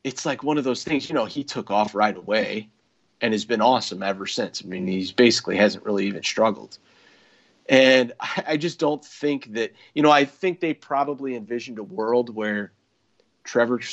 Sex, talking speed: male, 190 wpm